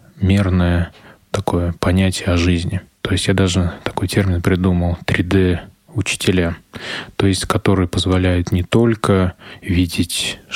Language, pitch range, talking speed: Russian, 90-100 Hz, 115 wpm